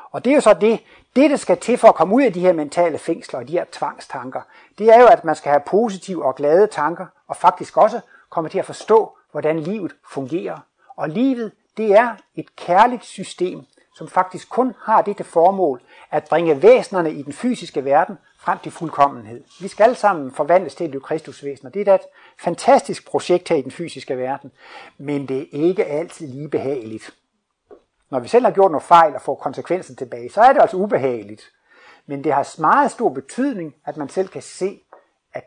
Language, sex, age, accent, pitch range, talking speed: Danish, male, 60-79, native, 145-215 Hz, 205 wpm